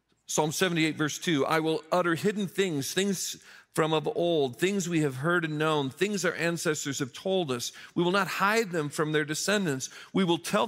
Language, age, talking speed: English, 40-59, 200 wpm